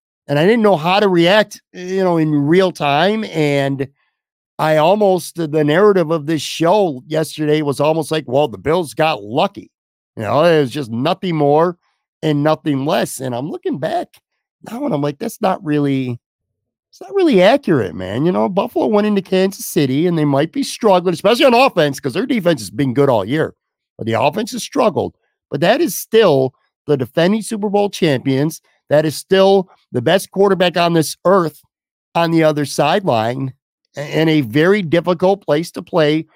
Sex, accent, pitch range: male, American, 145-190 Hz